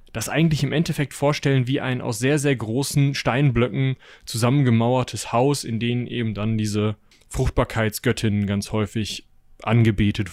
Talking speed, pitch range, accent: 135 wpm, 115-145 Hz, German